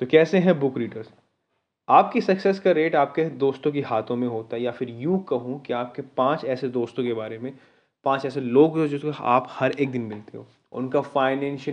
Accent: native